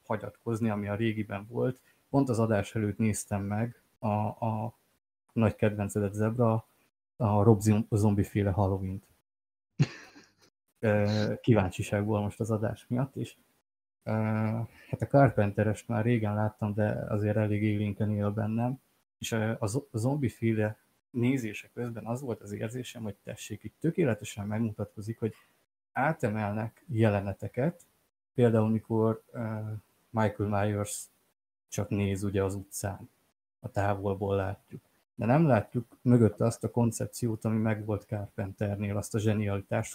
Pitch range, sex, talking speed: 105-115 Hz, male, 120 wpm